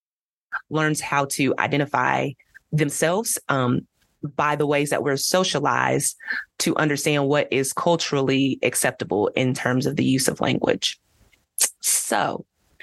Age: 30-49